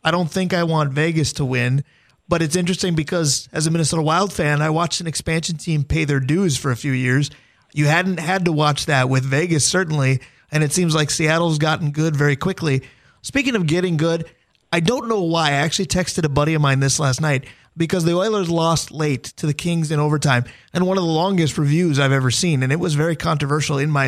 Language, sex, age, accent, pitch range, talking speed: English, male, 20-39, American, 145-175 Hz, 225 wpm